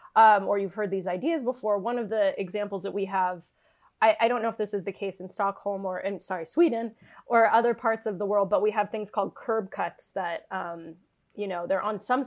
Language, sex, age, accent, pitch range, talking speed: English, female, 30-49, American, 195-250 Hz, 240 wpm